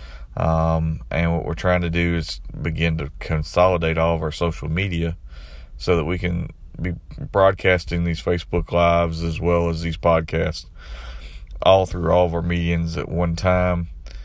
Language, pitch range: English, 80-90 Hz